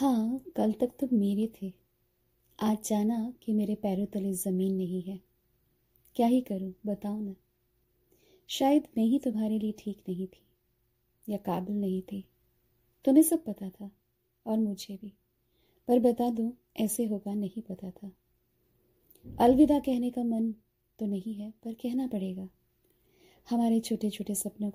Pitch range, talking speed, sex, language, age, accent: 200-240 Hz, 150 wpm, female, Hindi, 20-39, native